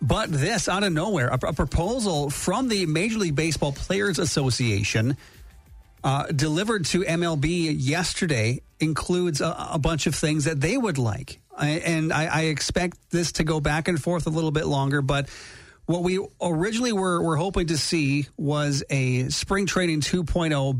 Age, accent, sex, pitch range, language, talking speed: 40-59, American, male, 130-165 Hz, English, 170 wpm